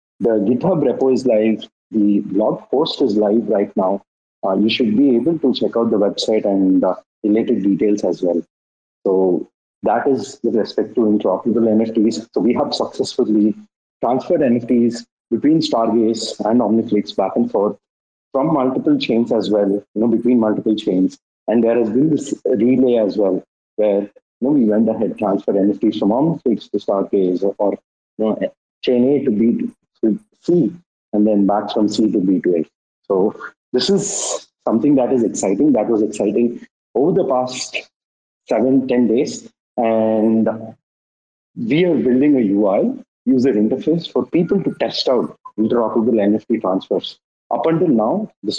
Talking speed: 165 wpm